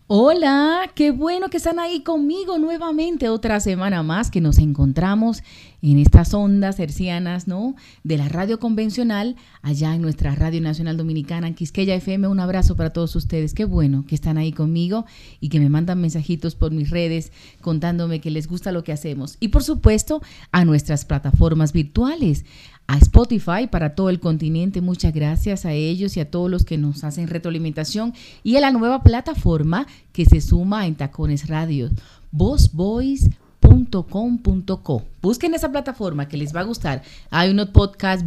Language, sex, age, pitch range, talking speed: Spanish, female, 40-59, 155-210 Hz, 170 wpm